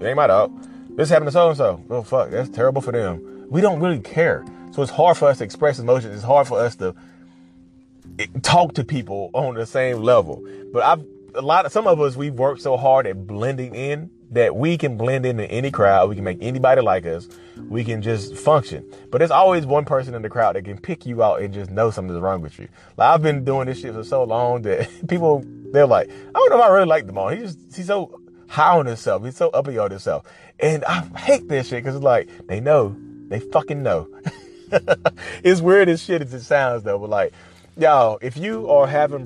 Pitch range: 100-145 Hz